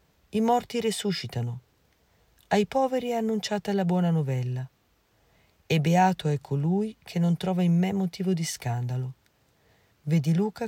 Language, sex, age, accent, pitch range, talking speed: Italian, female, 50-69, native, 135-190 Hz, 135 wpm